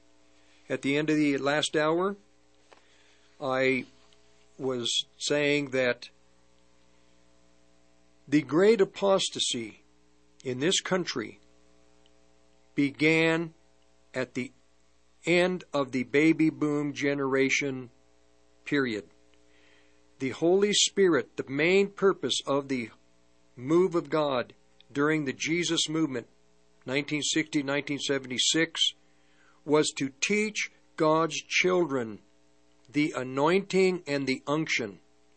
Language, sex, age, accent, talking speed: English, male, 50-69, American, 90 wpm